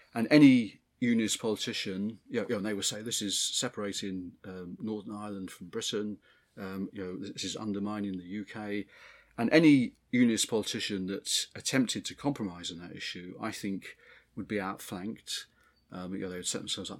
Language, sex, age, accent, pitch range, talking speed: English, male, 30-49, British, 95-120 Hz, 185 wpm